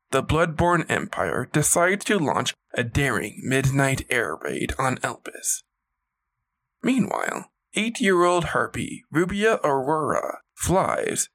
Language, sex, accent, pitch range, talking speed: English, male, American, 130-160 Hz, 100 wpm